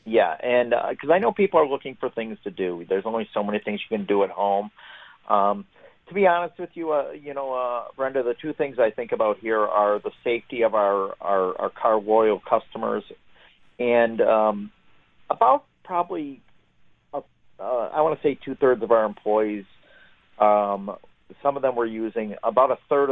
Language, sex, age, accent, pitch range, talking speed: English, male, 40-59, American, 100-140 Hz, 195 wpm